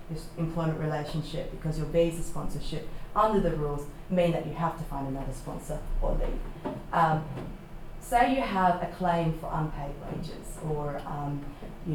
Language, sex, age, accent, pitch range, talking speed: English, female, 30-49, Australian, 155-175 Hz, 155 wpm